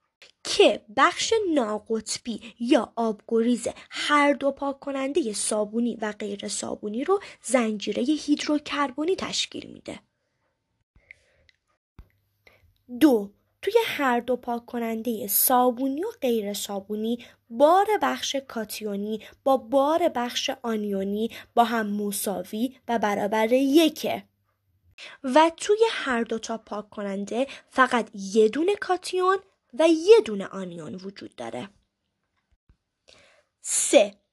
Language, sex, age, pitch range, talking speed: Persian, female, 20-39, 215-305 Hz, 105 wpm